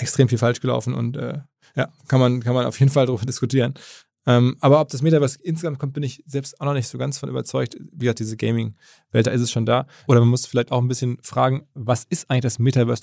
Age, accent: 20-39, German